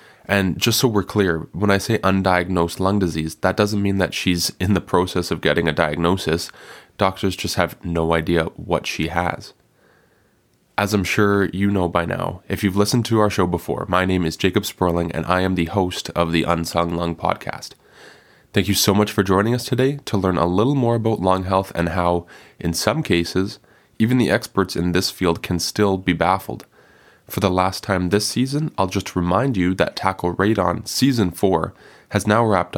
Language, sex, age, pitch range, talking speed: English, male, 20-39, 90-105 Hz, 200 wpm